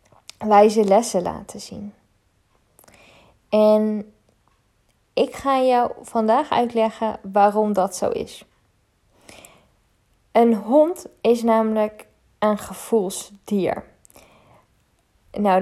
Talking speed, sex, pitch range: 80 wpm, female, 205-230 Hz